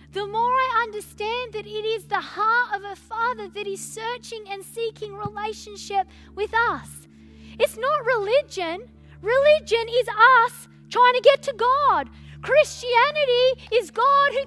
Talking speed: 145 wpm